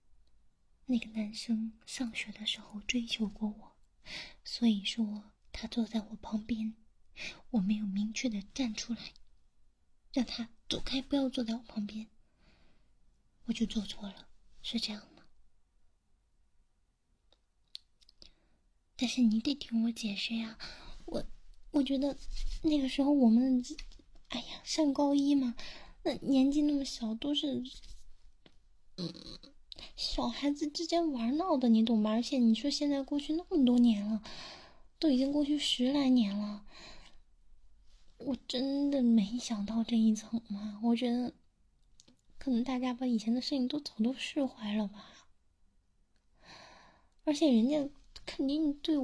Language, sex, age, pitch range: Chinese, female, 20-39, 215-275 Hz